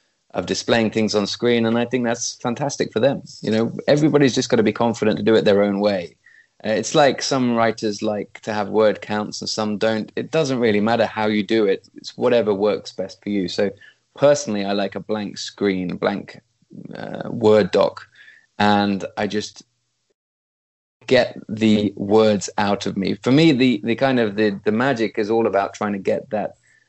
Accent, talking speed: British, 200 wpm